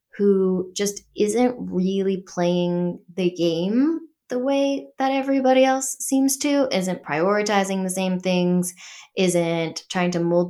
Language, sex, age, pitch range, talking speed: English, female, 10-29, 170-195 Hz, 130 wpm